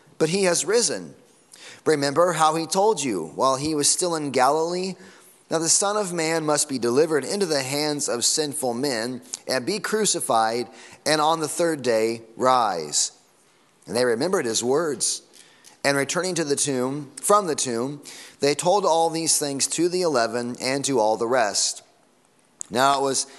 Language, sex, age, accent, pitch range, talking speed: English, male, 30-49, American, 130-165 Hz, 170 wpm